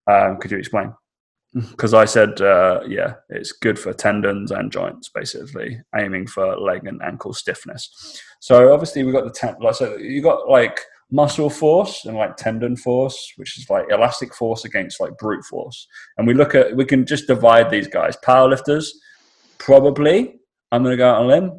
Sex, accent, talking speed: male, British, 195 wpm